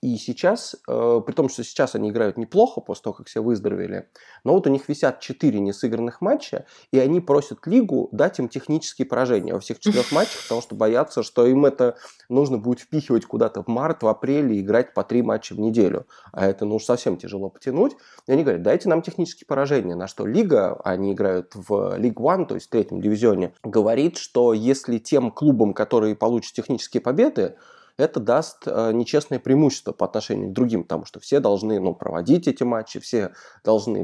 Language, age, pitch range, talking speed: Russian, 20-39, 105-130 Hz, 185 wpm